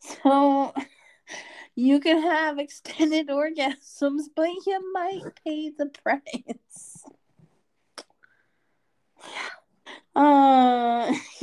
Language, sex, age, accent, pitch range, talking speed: English, female, 20-39, American, 220-315 Hz, 75 wpm